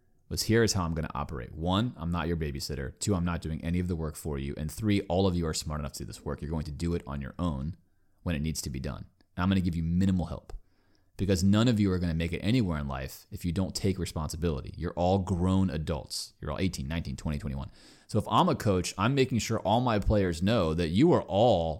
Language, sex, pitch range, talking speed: English, male, 80-105 Hz, 275 wpm